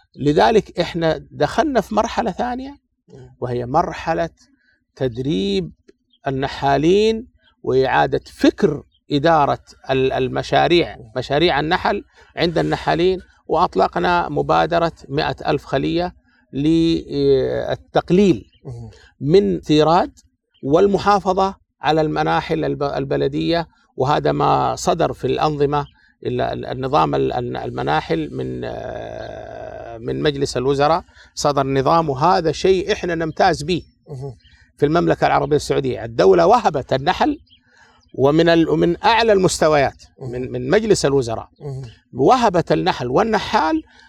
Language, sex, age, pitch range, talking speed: Arabic, male, 50-69, 140-200 Hz, 90 wpm